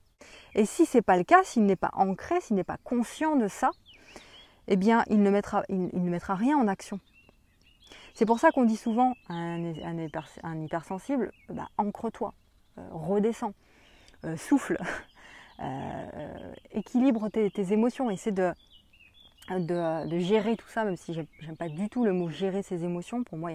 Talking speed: 170 wpm